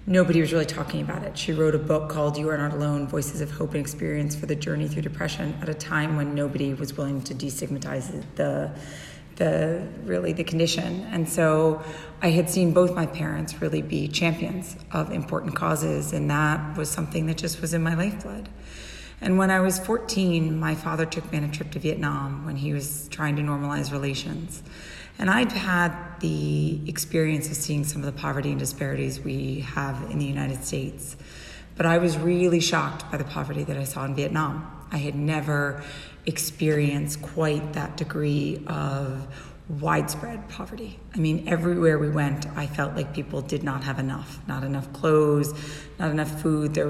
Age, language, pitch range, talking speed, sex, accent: 30-49, English, 145-160 Hz, 185 wpm, female, American